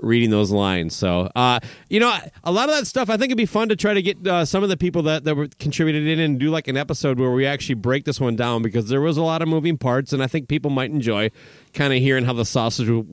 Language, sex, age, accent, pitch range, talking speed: English, male, 30-49, American, 115-155 Hz, 285 wpm